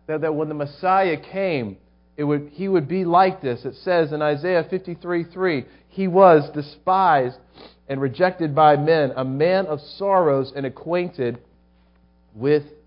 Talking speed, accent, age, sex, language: 135 wpm, American, 40-59, male, English